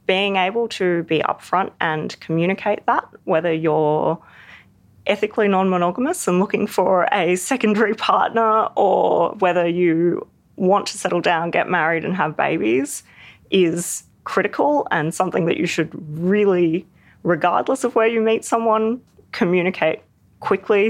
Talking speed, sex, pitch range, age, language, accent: 130 wpm, female, 155-190 Hz, 30-49, English, Australian